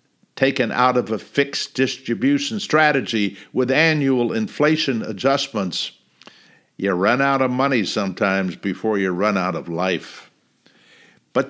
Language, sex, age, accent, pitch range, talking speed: English, male, 60-79, American, 100-155 Hz, 125 wpm